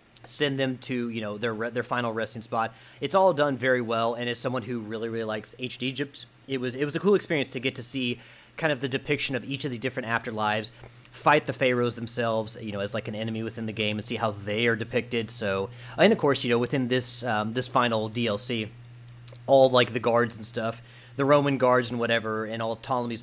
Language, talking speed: English, 240 wpm